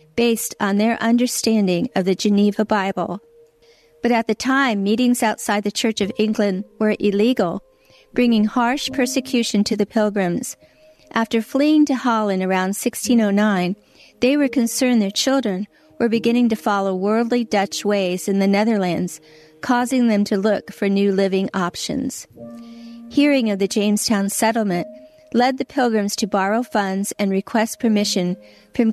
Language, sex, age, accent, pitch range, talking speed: English, female, 50-69, American, 195-235 Hz, 145 wpm